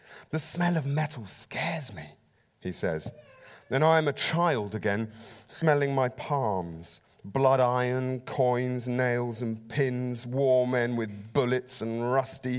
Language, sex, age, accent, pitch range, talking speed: English, male, 30-49, British, 120-155 Hz, 140 wpm